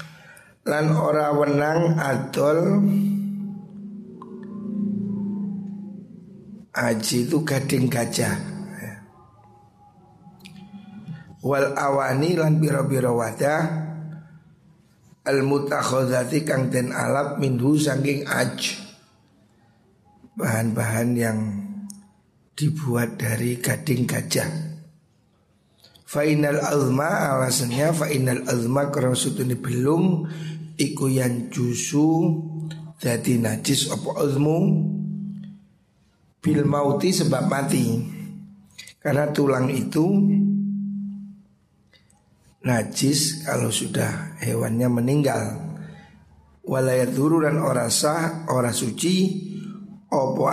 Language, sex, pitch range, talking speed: Indonesian, male, 130-175 Hz, 70 wpm